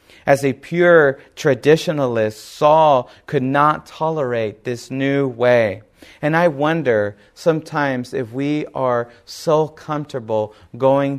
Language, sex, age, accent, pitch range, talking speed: English, male, 30-49, American, 115-150 Hz, 115 wpm